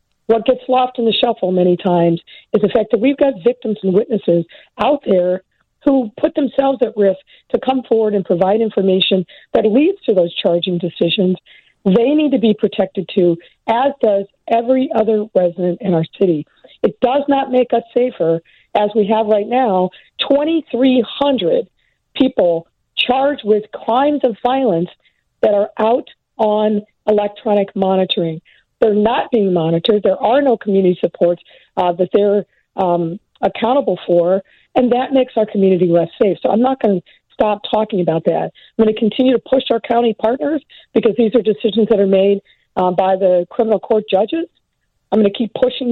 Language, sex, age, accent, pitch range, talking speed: English, female, 50-69, American, 190-255 Hz, 175 wpm